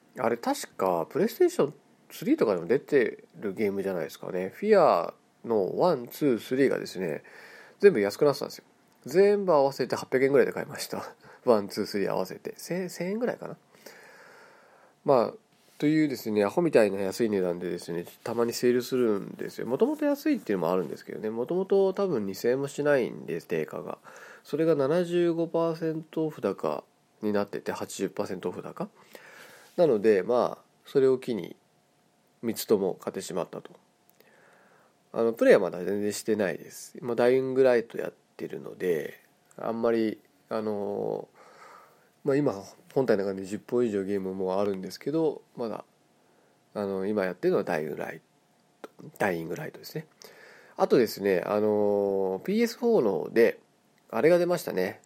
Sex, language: male, Japanese